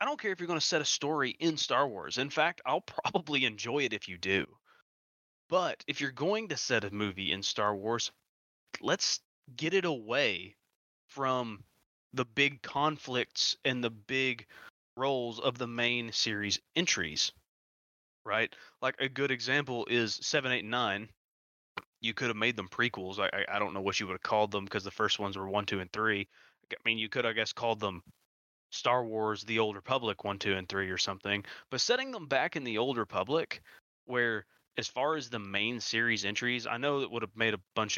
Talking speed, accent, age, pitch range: 205 wpm, American, 20-39, 100-130 Hz